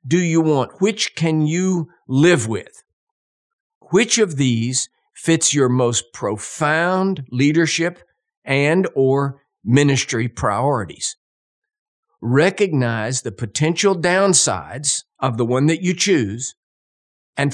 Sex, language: male, English